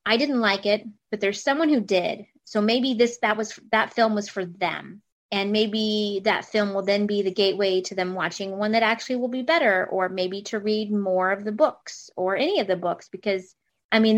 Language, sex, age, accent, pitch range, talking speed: English, female, 30-49, American, 185-245 Hz, 220 wpm